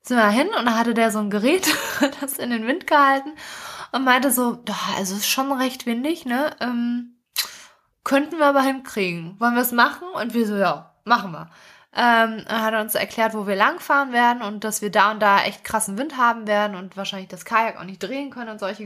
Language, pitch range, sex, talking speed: German, 210-265 Hz, female, 225 wpm